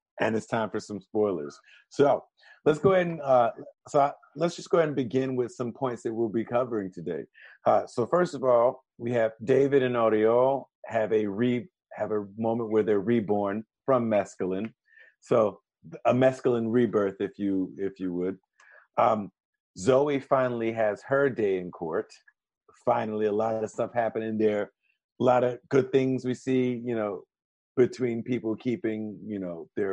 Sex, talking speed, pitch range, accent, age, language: male, 175 wpm, 105-130 Hz, American, 50-69, English